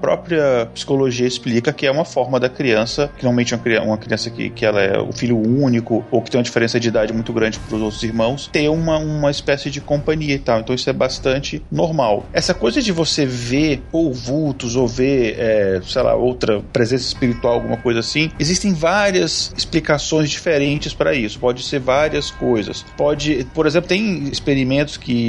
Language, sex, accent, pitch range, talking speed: Portuguese, male, Brazilian, 120-145 Hz, 195 wpm